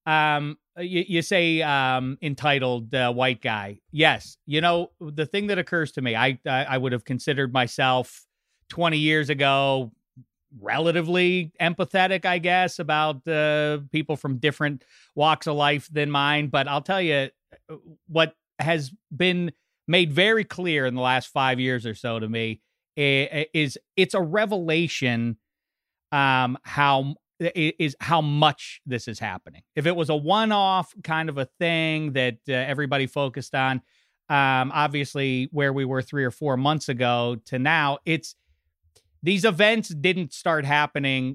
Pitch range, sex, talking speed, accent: 130-165 Hz, male, 150 wpm, American